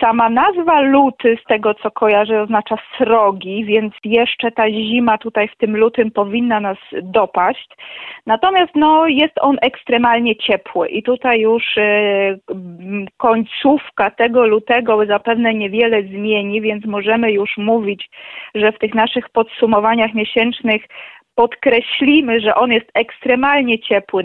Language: Polish